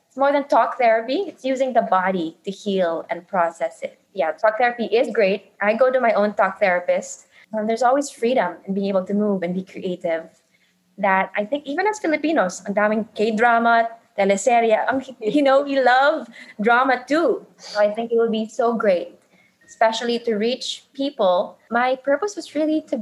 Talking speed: 180 wpm